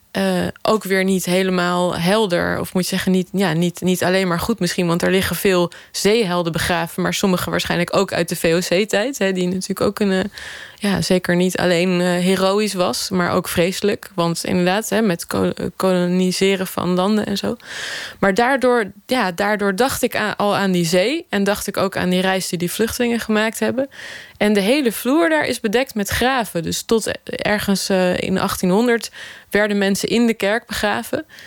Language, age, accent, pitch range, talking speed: Dutch, 20-39, Dutch, 180-215 Hz, 190 wpm